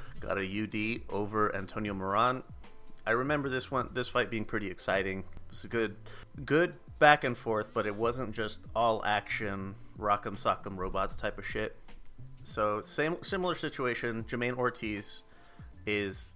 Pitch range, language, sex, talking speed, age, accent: 100-125 Hz, English, male, 155 wpm, 30-49, American